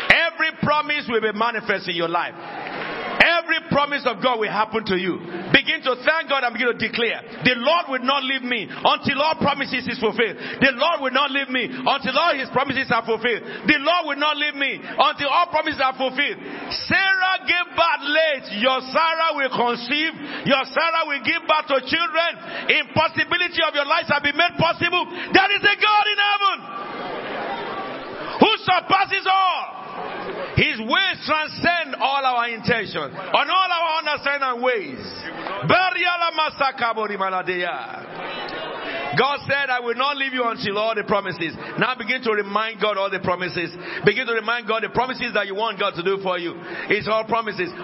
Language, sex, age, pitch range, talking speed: English, male, 50-69, 225-310 Hz, 175 wpm